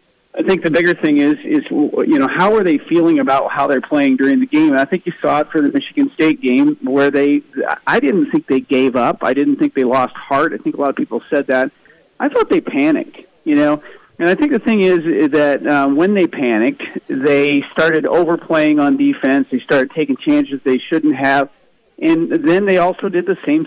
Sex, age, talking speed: male, 40-59, 230 wpm